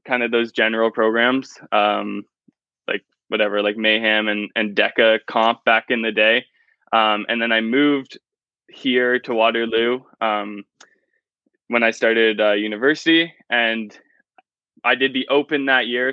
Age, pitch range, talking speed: 10-29, 110-125 Hz, 145 wpm